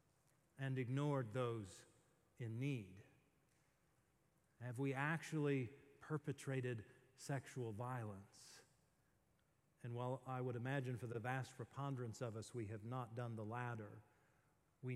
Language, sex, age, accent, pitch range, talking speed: English, male, 50-69, American, 120-140 Hz, 115 wpm